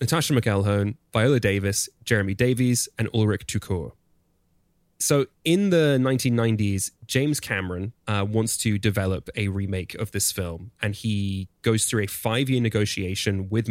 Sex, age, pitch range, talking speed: male, 20-39, 100-120 Hz, 140 wpm